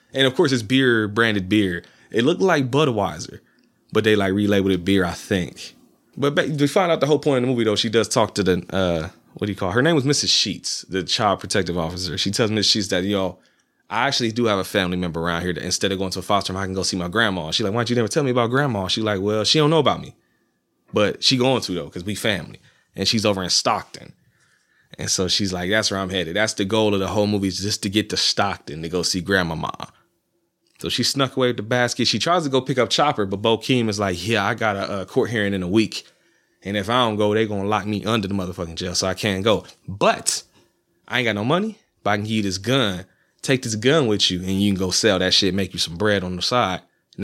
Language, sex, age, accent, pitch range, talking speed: English, male, 20-39, American, 95-125 Hz, 275 wpm